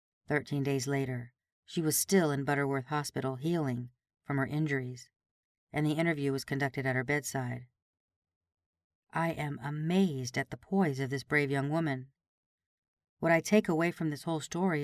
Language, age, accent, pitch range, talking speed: English, 40-59, American, 130-165 Hz, 160 wpm